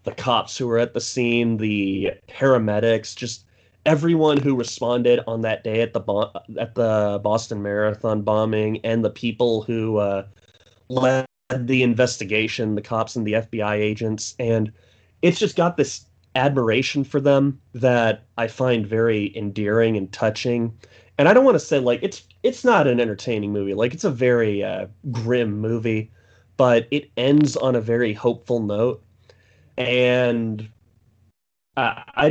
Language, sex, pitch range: English, male, 110-125 Hz